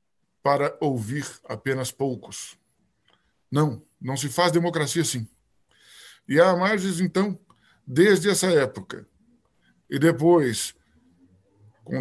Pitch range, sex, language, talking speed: 130-180 Hz, male, Portuguese, 100 wpm